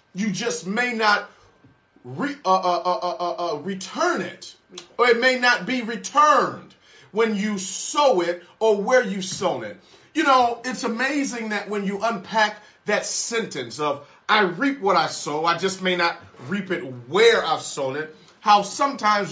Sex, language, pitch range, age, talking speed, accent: male, English, 185-235 Hz, 40-59, 170 wpm, American